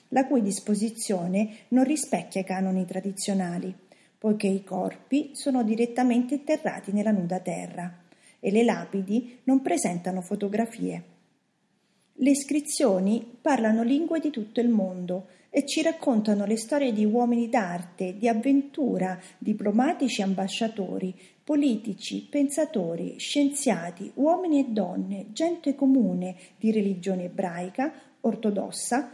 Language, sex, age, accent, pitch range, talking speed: Italian, female, 40-59, native, 190-250 Hz, 115 wpm